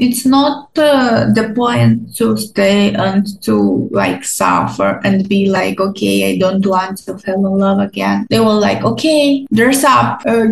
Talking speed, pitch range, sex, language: 170 wpm, 205-275 Hz, female, Romanian